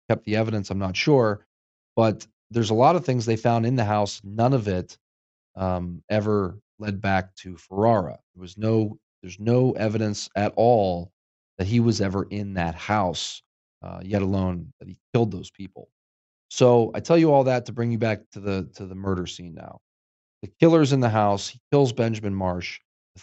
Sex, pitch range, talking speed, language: male, 90-115 Hz, 195 wpm, English